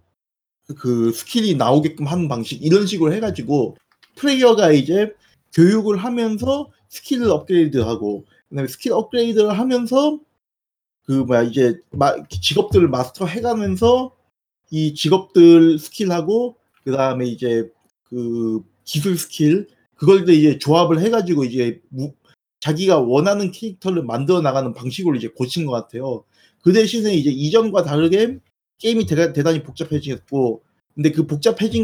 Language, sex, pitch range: Korean, male, 130-195 Hz